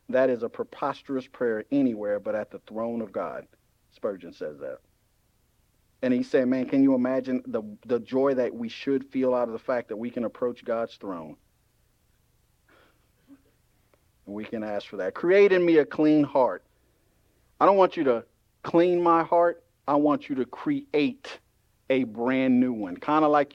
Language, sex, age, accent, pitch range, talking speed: English, male, 50-69, American, 125-165 Hz, 180 wpm